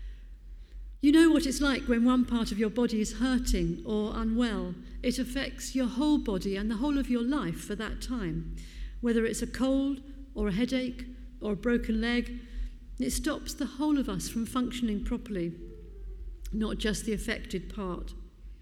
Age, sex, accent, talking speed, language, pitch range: 50-69, female, British, 175 wpm, English, 195-250 Hz